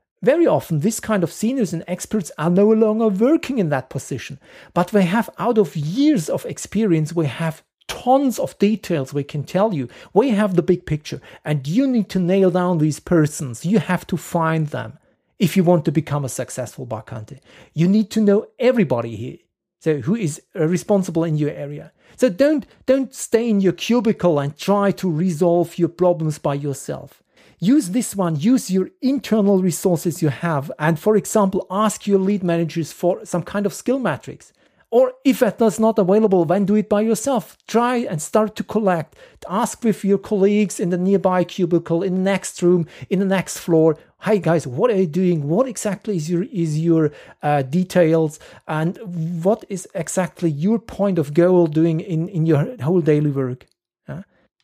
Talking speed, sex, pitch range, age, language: 185 wpm, male, 160-210 Hz, 40-59, English